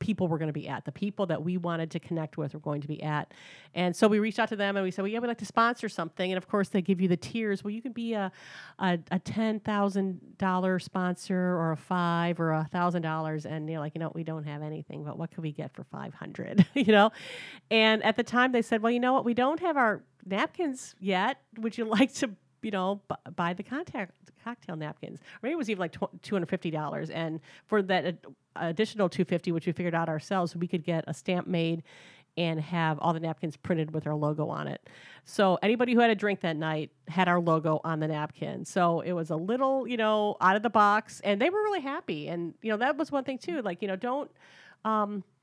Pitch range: 165-220 Hz